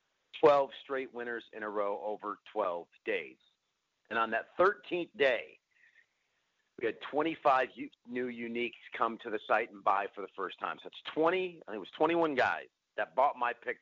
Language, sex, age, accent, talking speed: English, male, 50-69, American, 180 wpm